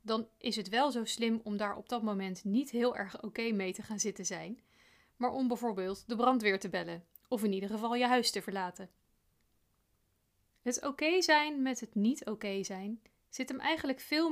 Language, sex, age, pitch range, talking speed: Dutch, female, 30-49, 205-255 Hz, 195 wpm